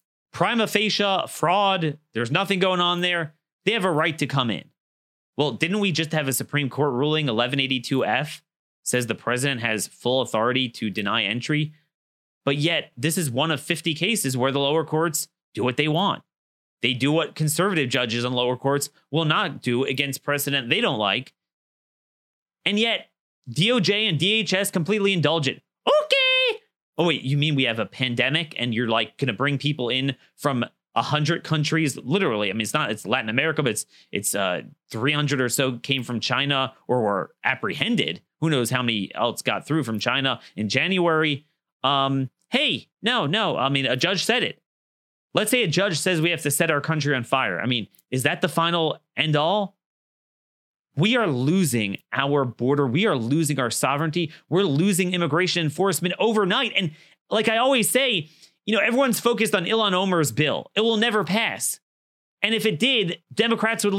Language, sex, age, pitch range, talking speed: English, male, 30-49, 135-185 Hz, 185 wpm